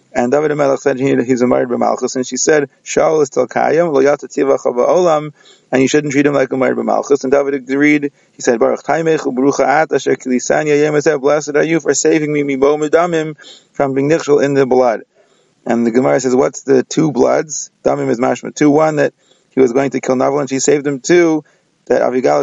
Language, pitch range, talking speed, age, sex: English, 135-155 Hz, 220 wpm, 30-49, male